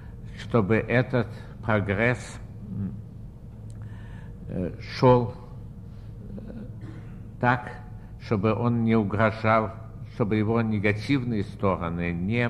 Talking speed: 65 wpm